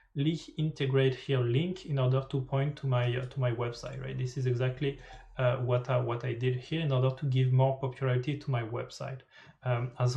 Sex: male